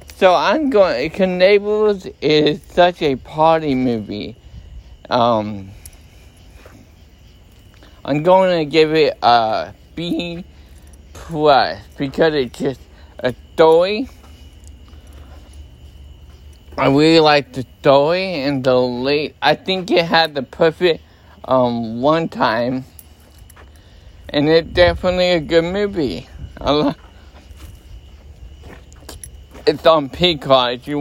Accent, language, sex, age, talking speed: American, English, male, 50-69, 105 wpm